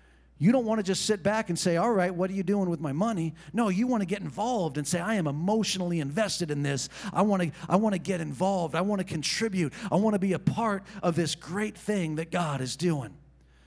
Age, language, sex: 40-59, English, male